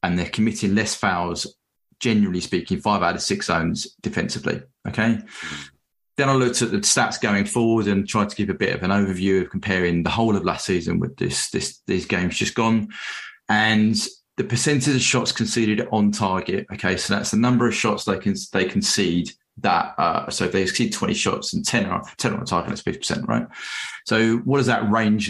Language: English